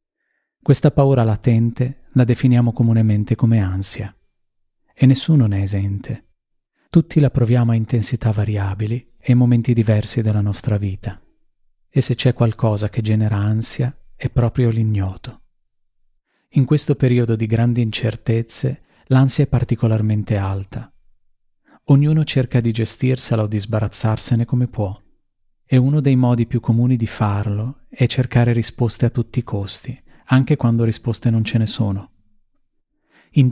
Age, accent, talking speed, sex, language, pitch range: 40-59, native, 140 wpm, male, Italian, 110-130 Hz